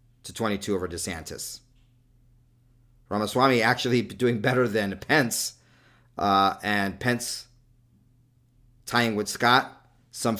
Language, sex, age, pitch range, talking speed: English, male, 40-59, 100-125 Hz, 100 wpm